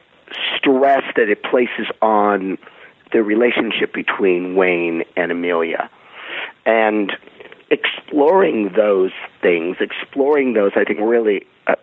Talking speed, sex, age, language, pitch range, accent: 105 wpm, male, 50-69, English, 95-130 Hz, American